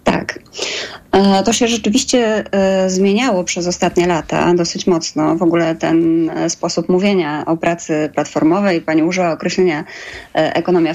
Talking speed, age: 130 wpm, 20-39